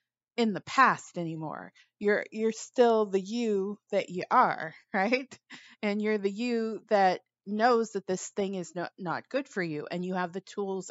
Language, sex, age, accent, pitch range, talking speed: English, female, 30-49, American, 180-220 Hz, 180 wpm